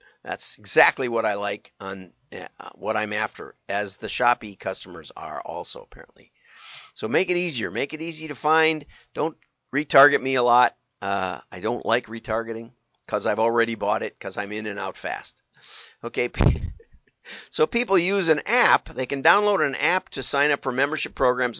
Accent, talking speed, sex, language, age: American, 175 wpm, male, English, 50-69